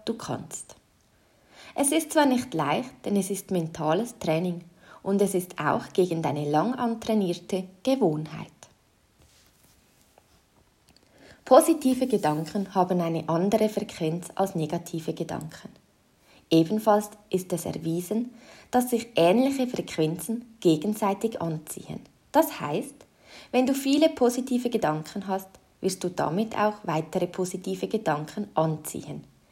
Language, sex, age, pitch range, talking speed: German, female, 20-39, 165-225 Hz, 110 wpm